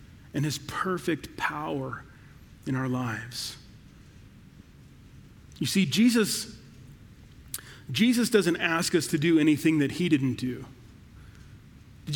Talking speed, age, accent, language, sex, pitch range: 110 wpm, 40-59, American, English, male, 130-190 Hz